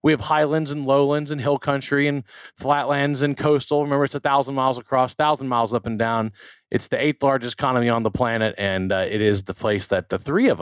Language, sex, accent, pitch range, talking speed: English, male, American, 105-140 Hz, 225 wpm